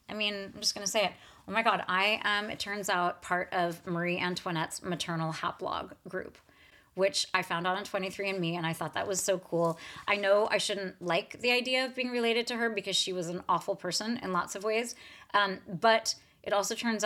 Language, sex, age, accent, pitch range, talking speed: English, female, 30-49, American, 180-225 Hz, 220 wpm